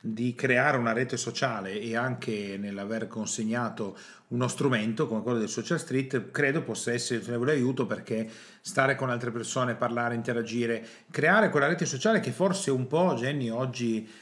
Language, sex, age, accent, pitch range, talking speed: Italian, male, 40-59, native, 115-150 Hz, 160 wpm